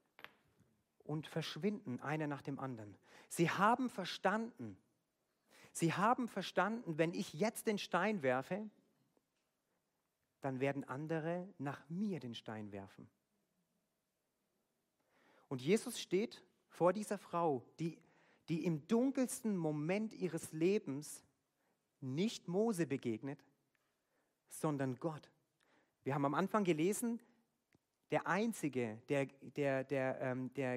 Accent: German